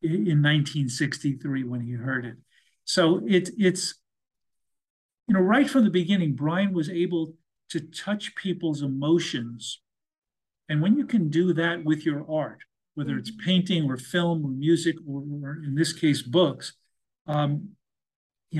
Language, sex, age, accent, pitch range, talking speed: English, male, 50-69, American, 140-170 Hz, 150 wpm